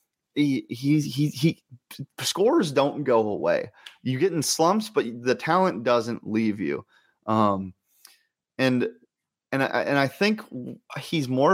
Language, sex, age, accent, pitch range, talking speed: English, male, 30-49, American, 115-150 Hz, 135 wpm